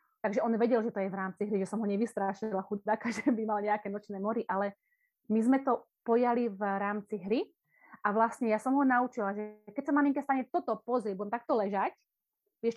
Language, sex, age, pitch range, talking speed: Slovak, female, 30-49, 205-245 Hz, 210 wpm